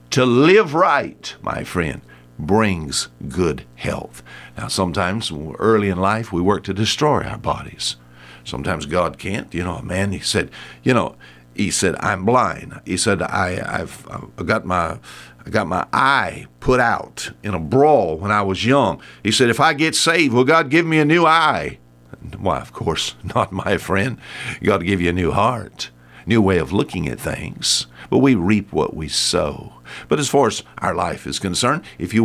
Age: 60-79